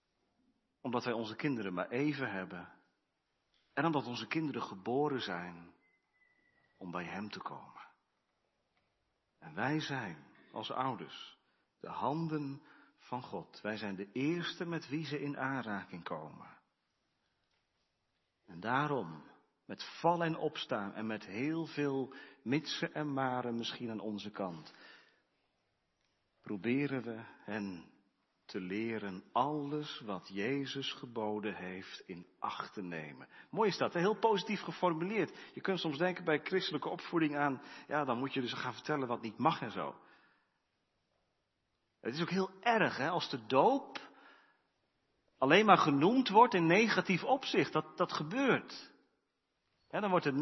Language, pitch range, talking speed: Dutch, 115-170 Hz, 140 wpm